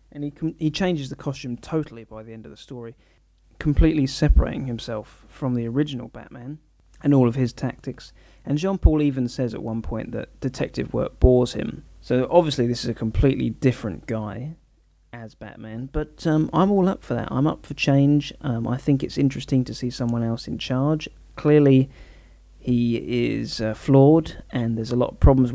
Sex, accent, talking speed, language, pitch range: male, British, 190 wpm, English, 110-140 Hz